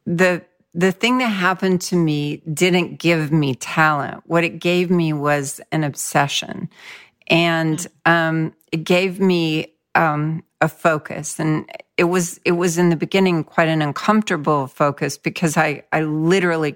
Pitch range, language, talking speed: 145-170 Hz, English, 150 wpm